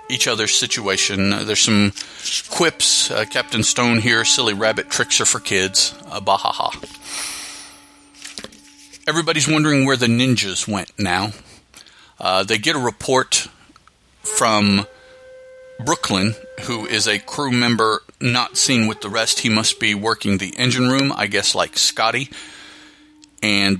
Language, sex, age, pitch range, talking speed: English, male, 40-59, 100-140 Hz, 140 wpm